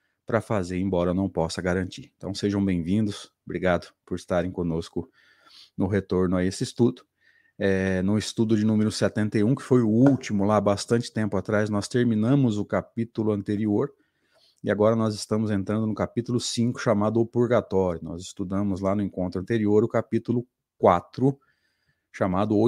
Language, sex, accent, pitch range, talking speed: Portuguese, male, Brazilian, 100-120 Hz, 155 wpm